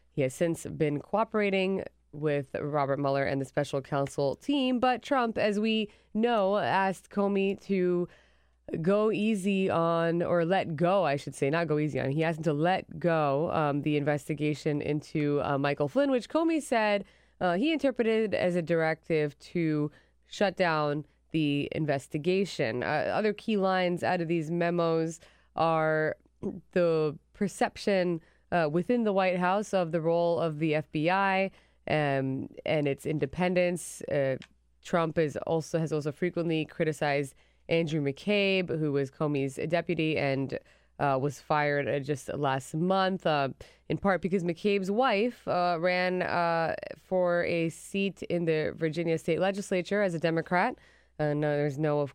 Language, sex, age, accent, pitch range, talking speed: English, female, 20-39, American, 150-190 Hz, 155 wpm